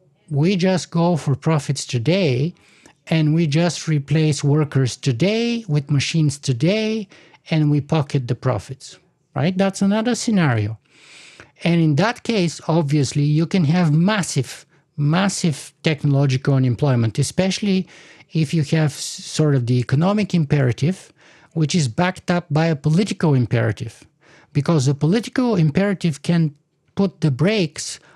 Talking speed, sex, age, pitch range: 130 wpm, male, 50-69, 140-175 Hz